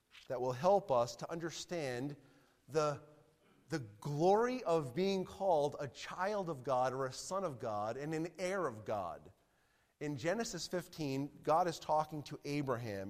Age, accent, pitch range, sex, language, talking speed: 40-59, American, 130-180 Hz, male, English, 155 wpm